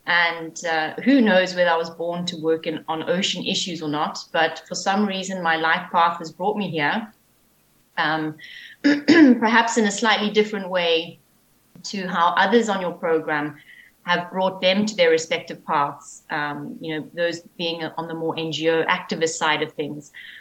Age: 30-49